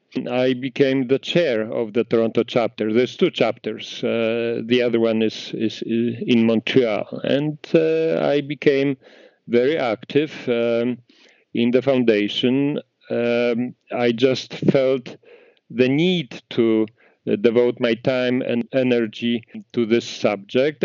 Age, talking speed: 50-69, 125 wpm